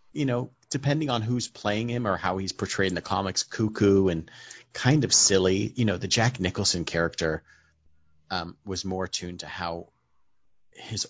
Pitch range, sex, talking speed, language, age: 85-100 Hz, male, 175 wpm, English, 30-49